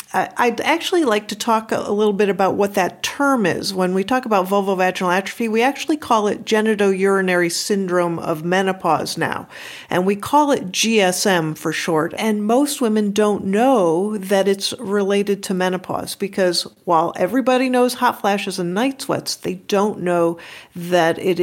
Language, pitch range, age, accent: English, 175-220 Hz, 50-69, American